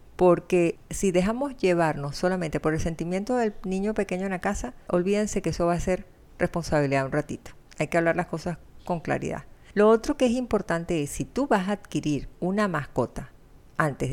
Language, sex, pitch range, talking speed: Spanish, female, 155-185 Hz, 185 wpm